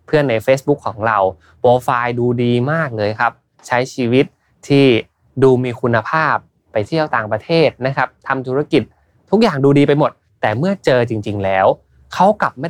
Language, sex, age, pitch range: Thai, male, 20-39, 110-150 Hz